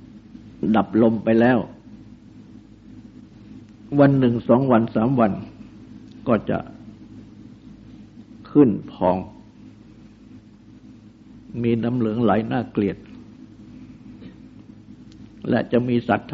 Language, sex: Thai, male